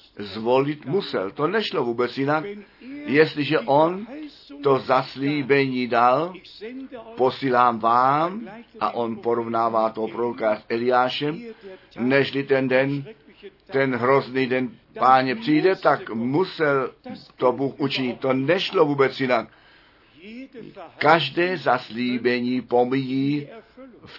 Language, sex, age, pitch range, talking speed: Czech, male, 50-69, 125-165 Hz, 100 wpm